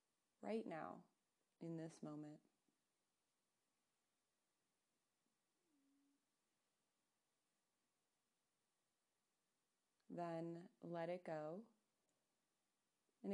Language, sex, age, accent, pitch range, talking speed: English, female, 20-39, American, 160-205 Hz, 45 wpm